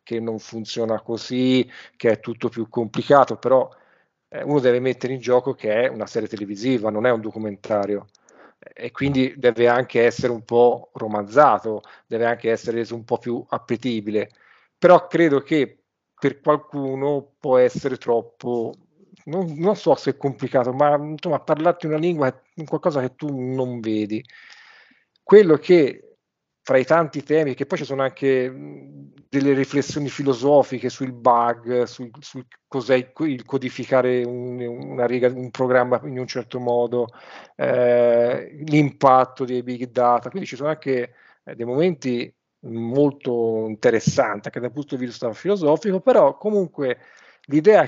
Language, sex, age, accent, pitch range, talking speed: Italian, male, 40-59, native, 120-145 Hz, 145 wpm